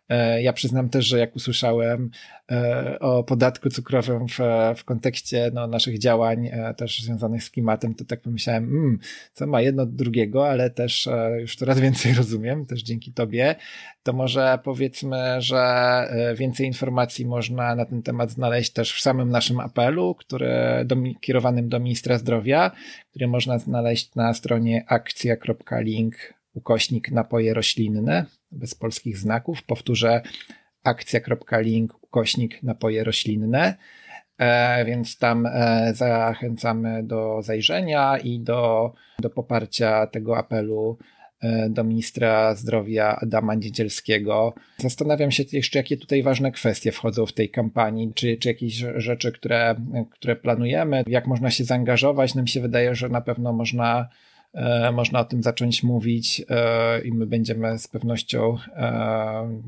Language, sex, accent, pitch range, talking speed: Polish, male, native, 115-125 Hz, 135 wpm